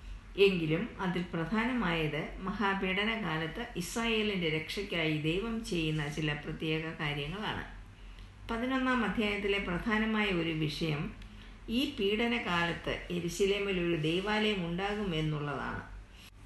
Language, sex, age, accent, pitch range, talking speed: Malayalam, female, 50-69, native, 155-210 Hz, 80 wpm